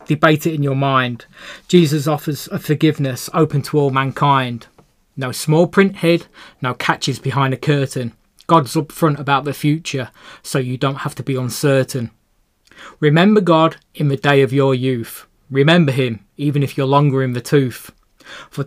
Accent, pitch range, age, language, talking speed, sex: British, 130-155 Hz, 20-39, English, 165 wpm, male